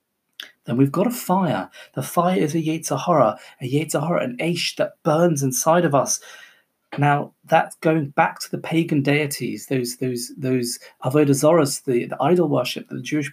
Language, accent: English, British